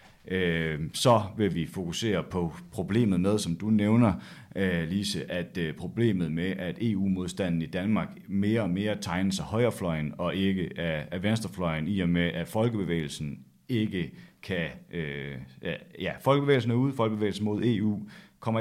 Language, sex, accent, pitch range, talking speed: Danish, male, native, 80-95 Hz, 145 wpm